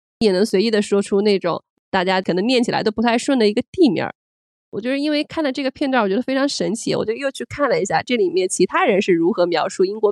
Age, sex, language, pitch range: 20-39, female, Chinese, 195-265 Hz